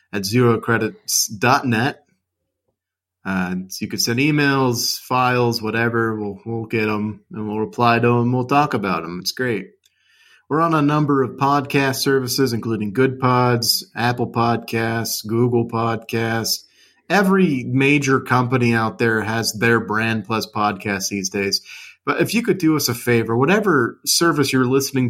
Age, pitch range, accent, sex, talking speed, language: 30-49, 110-135 Hz, American, male, 150 wpm, English